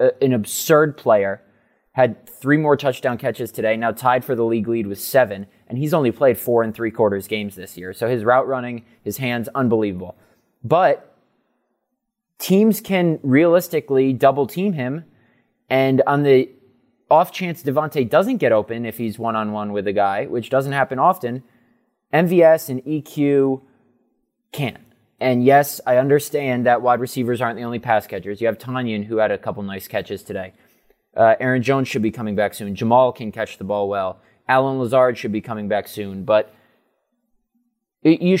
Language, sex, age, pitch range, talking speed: English, male, 20-39, 110-145 Hz, 170 wpm